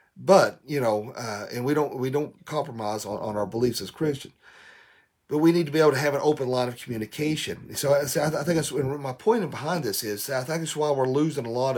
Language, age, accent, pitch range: English, 40-59, American, 110-145 Hz